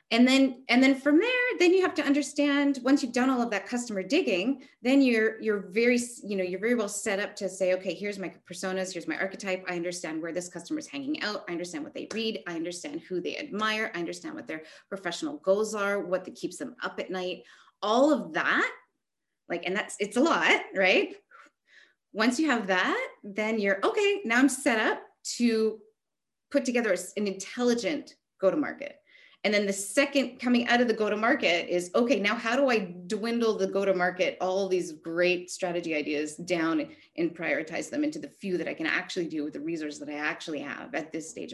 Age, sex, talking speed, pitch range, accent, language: 30-49, female, 205 wpm, 185-280 Hz, American, French